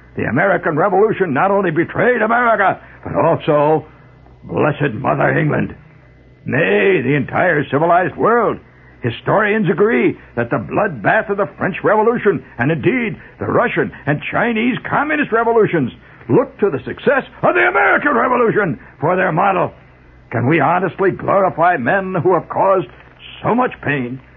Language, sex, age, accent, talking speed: English, male, 60-79, American, 140 wpm